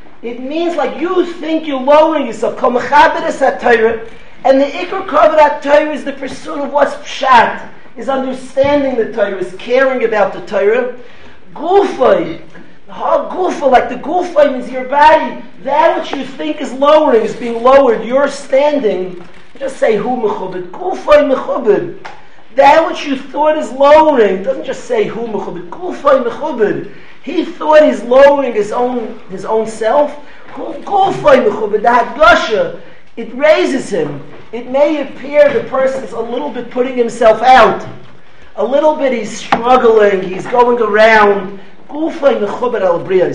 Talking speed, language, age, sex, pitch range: 130 wpm, English, 40-59, male, 230-300 Hz